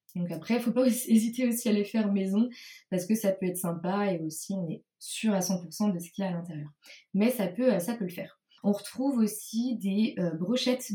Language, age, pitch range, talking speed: French, 20-39, 180-210 Hz, 235 wpm